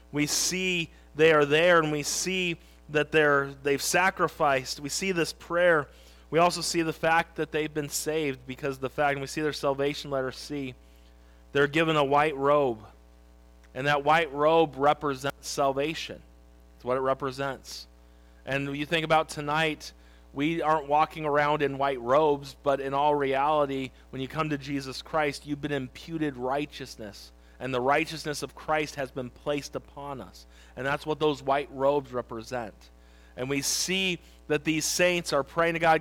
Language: English